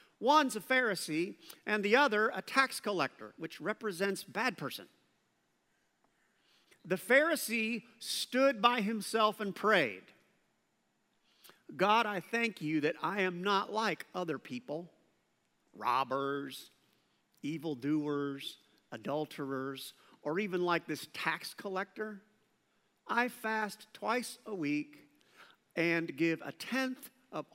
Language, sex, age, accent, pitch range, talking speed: English, male, 50-69, American, 160-220 Hz, 110 wpm